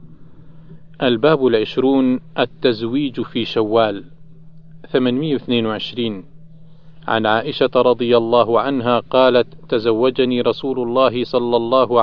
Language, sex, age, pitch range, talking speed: Arabic, male, 40-59, 115-145 Hz, 85 wpm